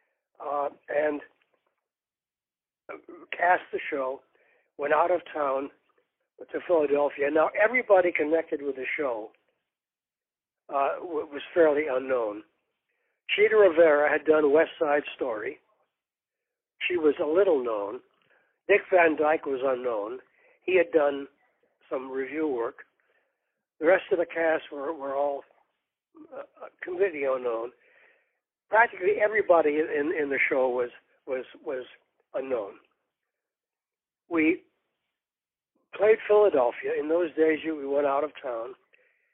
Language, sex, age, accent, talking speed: English, male, 60-79, American, 115 wpm